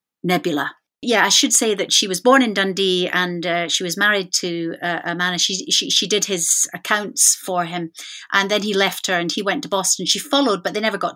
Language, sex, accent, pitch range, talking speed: English, female, British, 180-245 Hz, 240 wpm